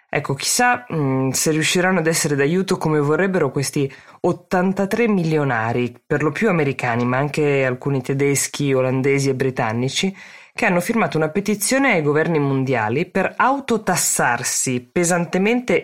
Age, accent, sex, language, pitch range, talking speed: 20-39, native, female, Italian, 130-170 Hz, 130 wpm